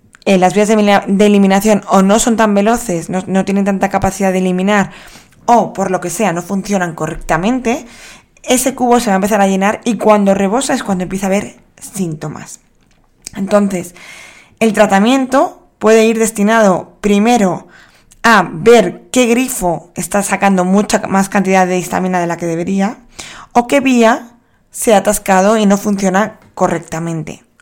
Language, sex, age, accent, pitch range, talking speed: Spanish, female, 20-39, Spanish, 190-230 Hz, 160 wpm